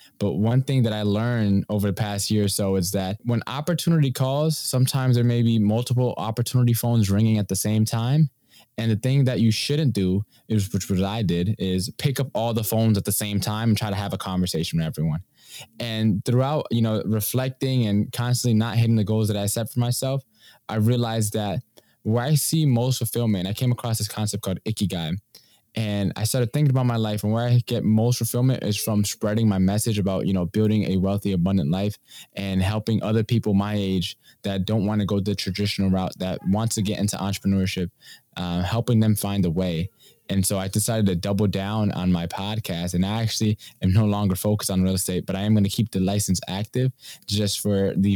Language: English